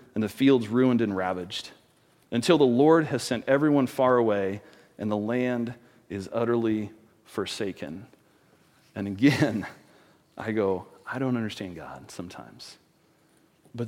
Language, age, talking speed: English, 40-59, 130 wpm